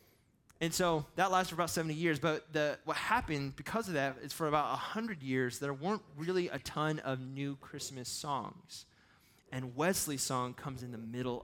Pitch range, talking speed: 120-145 Hz, 185 wpm